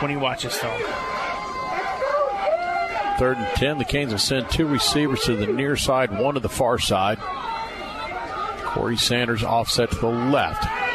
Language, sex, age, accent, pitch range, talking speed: English, male, 50-69, American, 130-175 Hz, 155 wpm